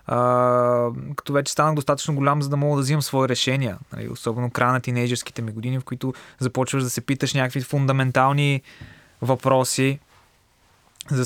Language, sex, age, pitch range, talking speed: Bulgarian, male, 20-39, 130-160 Hz, 155 wpm